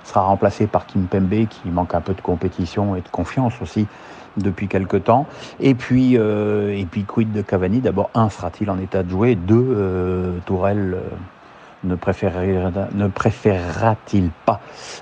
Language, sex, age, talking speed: French, male, 50-69, 170 wpm